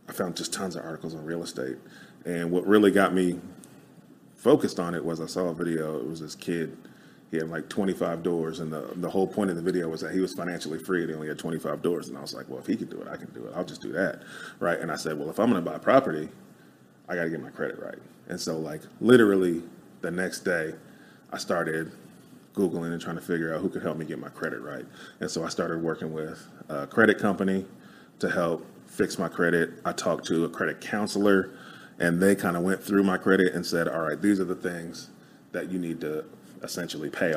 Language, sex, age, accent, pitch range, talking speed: English, male, 30-49, American, 80-95 Hz, 245 wpm